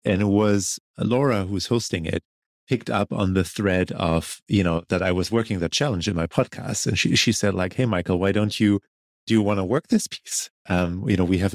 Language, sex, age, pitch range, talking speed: English, male, 30-49, 85-105 Hz, 240 wpm